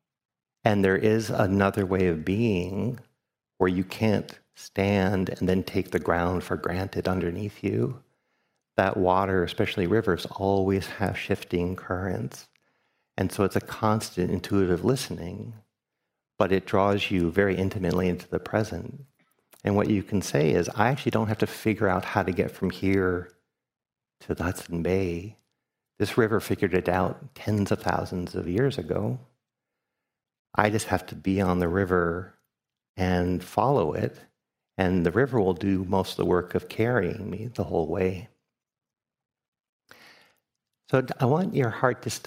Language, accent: English, American